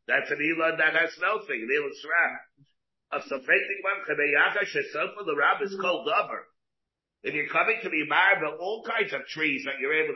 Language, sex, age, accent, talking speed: English, male, 50-69, American, 155 wpm